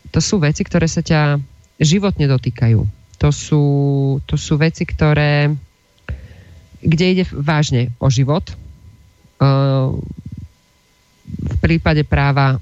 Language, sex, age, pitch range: Slovak, female, 30-49, 115-150 Hz